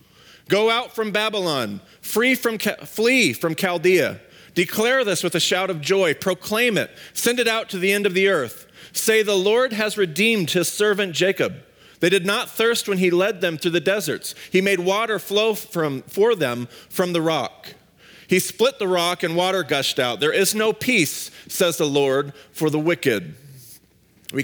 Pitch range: 165-205 Hz